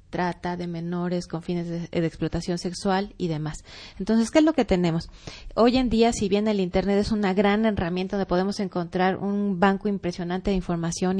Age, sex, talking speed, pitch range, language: 30-49, female, 195 wpm, 175-205 Hz, Spanish